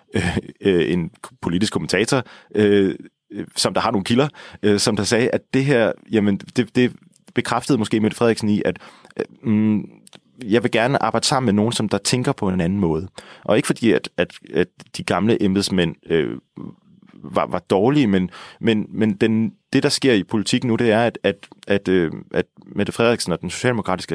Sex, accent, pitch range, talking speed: male, native, 100-130 Hz, 195 wpm